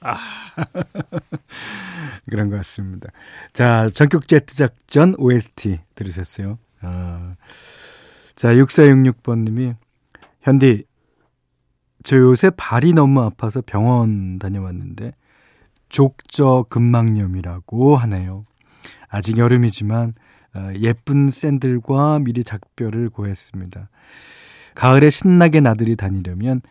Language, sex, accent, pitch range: Korean, male, native, 100-135 Hz